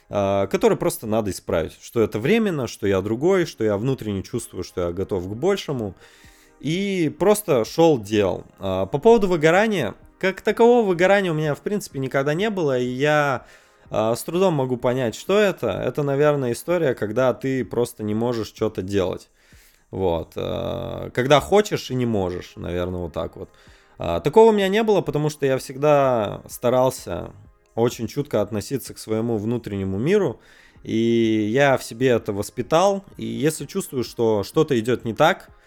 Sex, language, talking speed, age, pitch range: male, Russian, 160 wpm, 20-39, 110-150 Hz